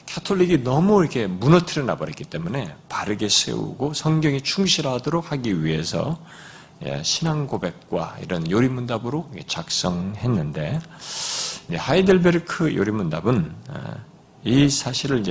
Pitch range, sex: 140-190 Hz, male